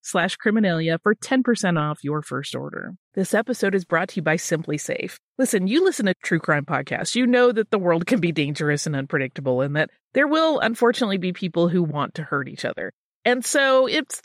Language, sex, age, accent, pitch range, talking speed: English, female, 30-49, American, 160-235 Hz, 210 wpm